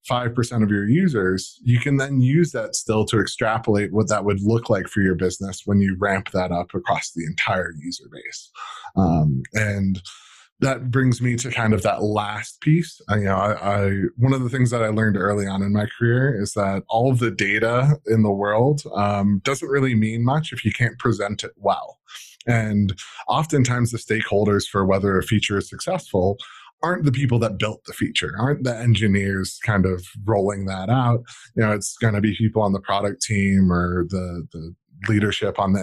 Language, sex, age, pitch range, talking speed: English, male, 20-39, 100-120 Hz, 200 wpm